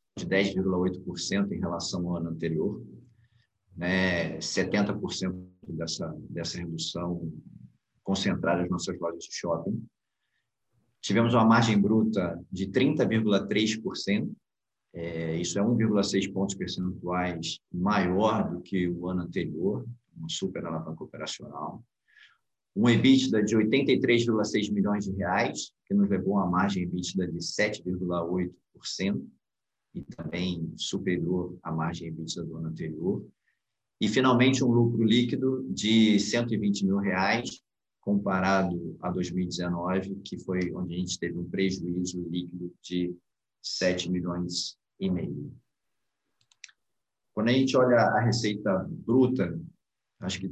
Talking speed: 115 wpm